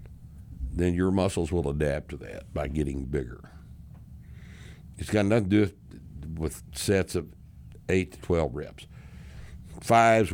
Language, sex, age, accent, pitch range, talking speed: English, male, 60-79, American, 75-100 Hz, 140 wpm